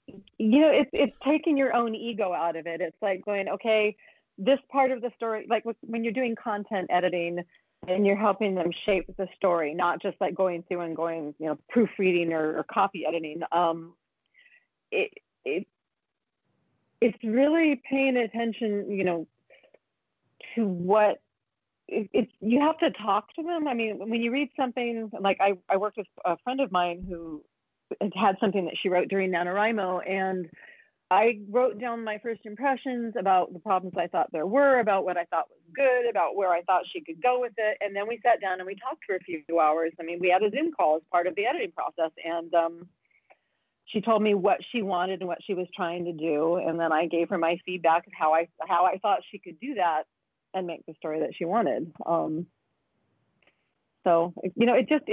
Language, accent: English, American